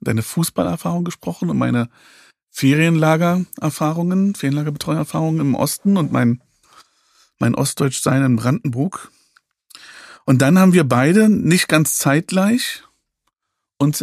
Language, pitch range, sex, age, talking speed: German, 120-155 Hz, male, 40-59, 105 wpm